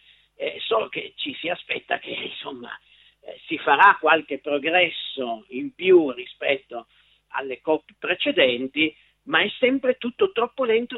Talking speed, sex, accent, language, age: 135 wpm, male, native, Italian, 50-69